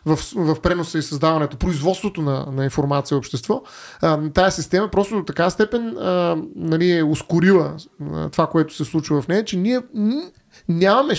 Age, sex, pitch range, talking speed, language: 30-49, male, 170-240 Hz, 165 wpm, Bulgarian